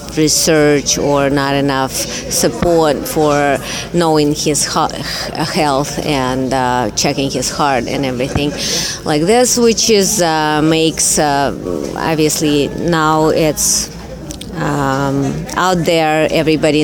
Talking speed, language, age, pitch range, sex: 110 wpm, English, 30-49, 150-190 Hz, female